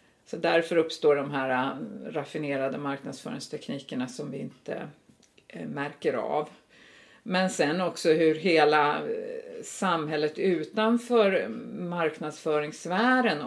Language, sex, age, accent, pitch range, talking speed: Swedish, female, 50-69, native, 145-210 Hz, 90 wpm